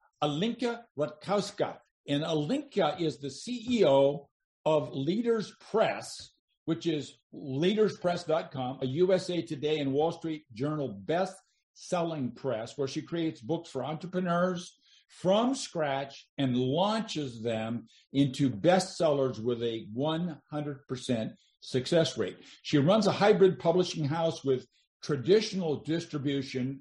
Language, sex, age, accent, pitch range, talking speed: English, male, 50-69, American, 135-180 Hz, 115 wpm